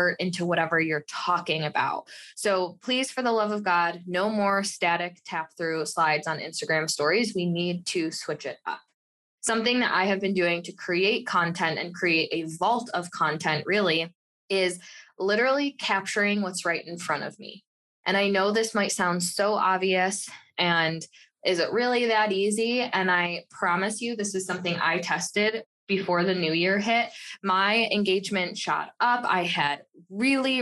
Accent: American